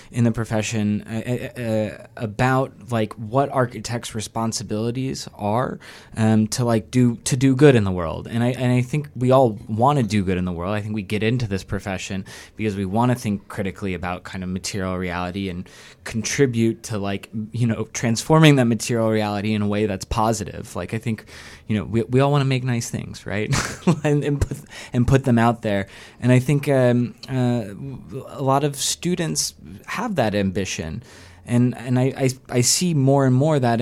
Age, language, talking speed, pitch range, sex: 20-39, English, 200 wpm, 105-125 Hz, male